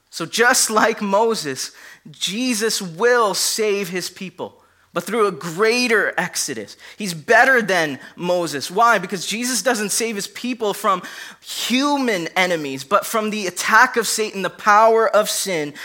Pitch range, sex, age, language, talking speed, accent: 160-215 Hz, male, 20-39, English, 145 wpm, American